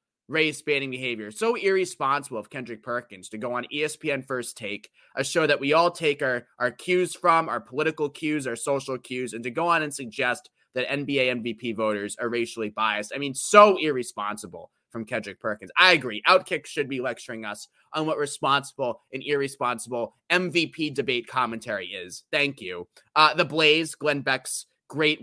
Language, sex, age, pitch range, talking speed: English, male, 20-39, 120-150 Hz, 175 wpm